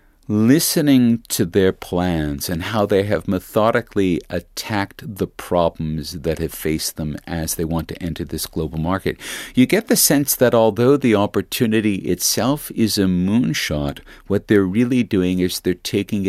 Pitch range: 80-105 Hz